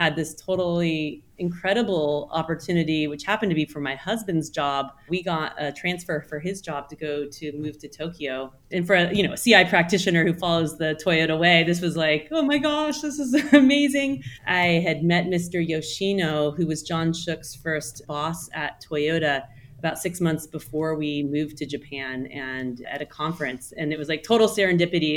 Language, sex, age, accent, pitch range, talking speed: English, female, 30-49, American, 155-190 Hz, 190 wpm